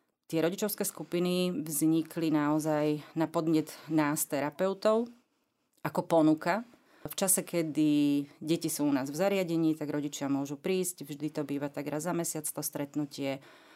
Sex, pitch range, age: female, 150-170 Hz, 30-49